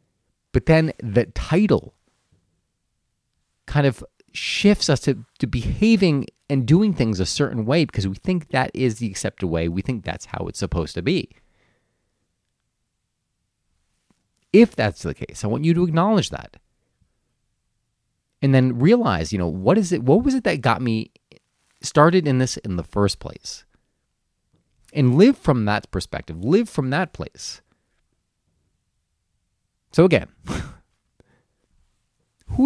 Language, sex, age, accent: English, male, 30-49, American